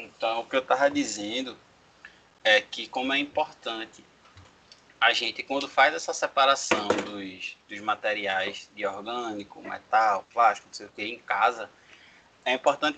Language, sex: Portuguese, male